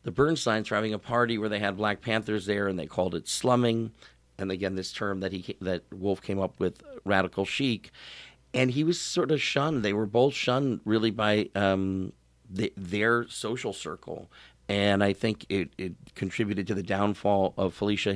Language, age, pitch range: English, 50-69, 95-115 Hz